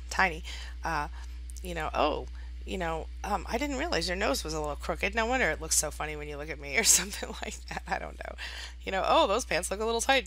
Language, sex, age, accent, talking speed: English, female, 30-49, American, 255 wpm